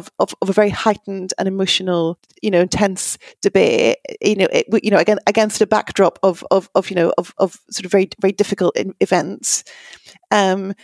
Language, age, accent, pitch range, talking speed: English, 30-49, British, 195-240 Hz, 195 wpm